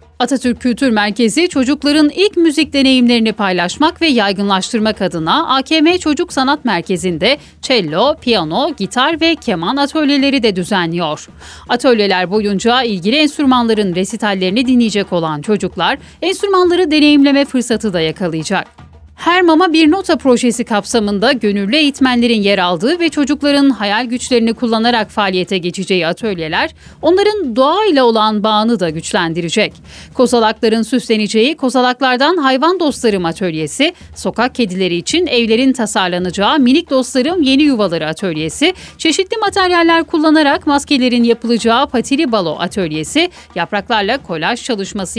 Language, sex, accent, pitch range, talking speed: Turkish, female, native, 200-290 Hz, 115 wpm